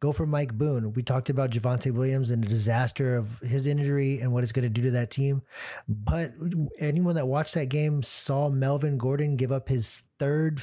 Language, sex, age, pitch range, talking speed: English, male, 30-49, 120-145 Hz, 210 wpm